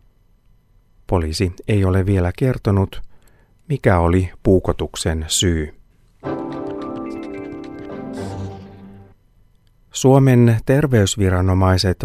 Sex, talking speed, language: male, 55 wpm, Finnish